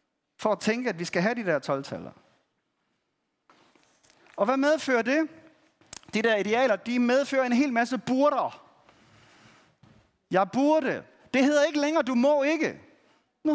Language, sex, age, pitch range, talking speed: Danish, male, 40-59, 210-290 Hz, 145 wpm